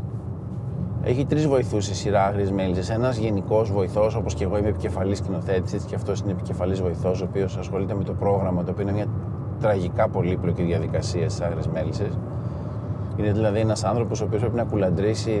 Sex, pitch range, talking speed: male, 95-115 Hz, 180 wpm